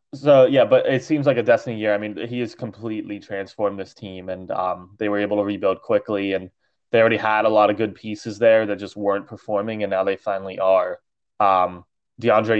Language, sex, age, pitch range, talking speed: English, male, 20-39, 95-110 Hz, 220 wpm